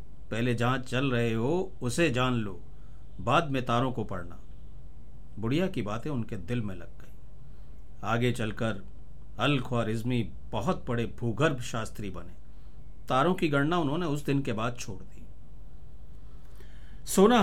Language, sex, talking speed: Hindi, male, 140 wpm